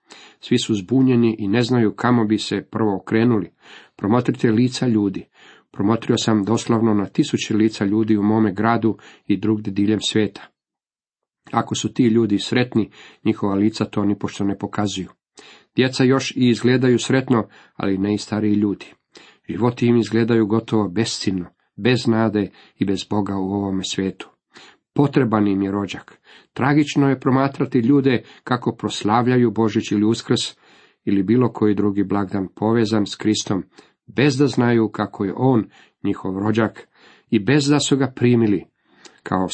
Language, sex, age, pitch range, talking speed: Croatian, male, 40-59, 100-120 Hz, 150 wpm